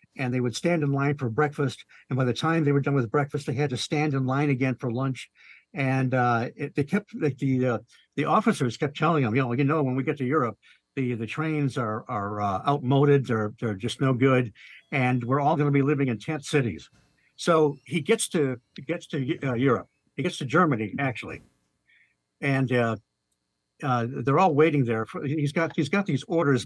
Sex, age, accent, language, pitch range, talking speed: male, 60-79, American, English, 120-150 Hz, 220 wpm